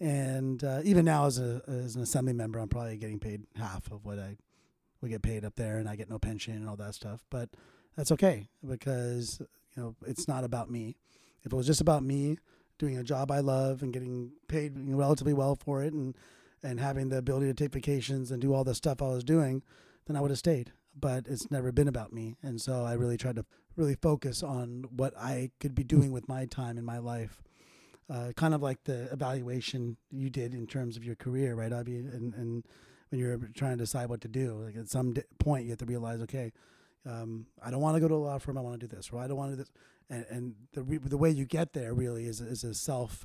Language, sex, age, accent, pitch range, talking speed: English, male, 30-49, American, 115-140 Hz, 245 wpm